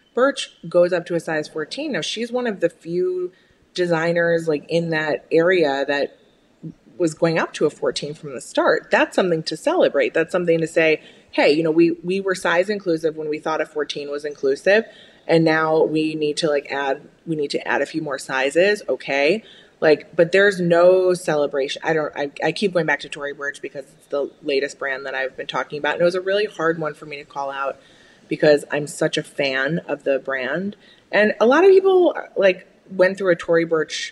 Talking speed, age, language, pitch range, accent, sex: 215 wpm, 20-39, English, 150-185 Hz, American, female